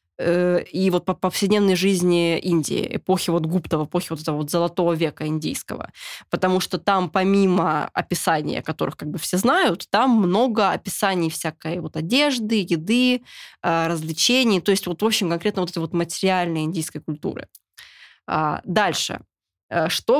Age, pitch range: 20-39, 170-205 Hz